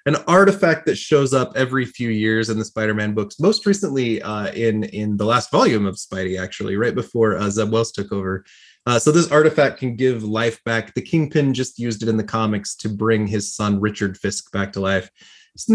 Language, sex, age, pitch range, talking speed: English, male, 30-49, 110-145 Hz, 215 wpm